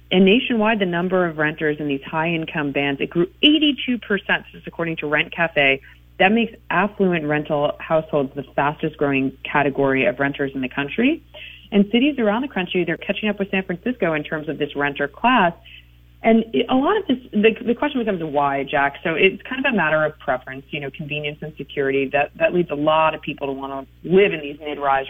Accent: American